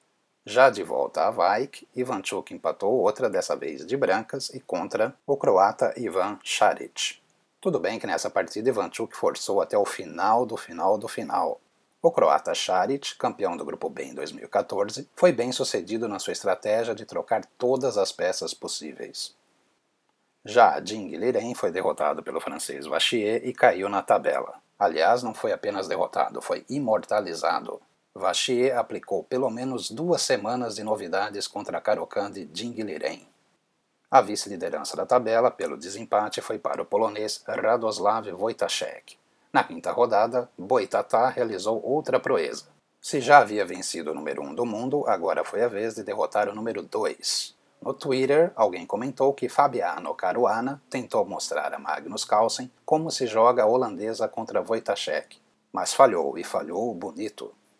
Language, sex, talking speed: Portuguese, male, 150 wpm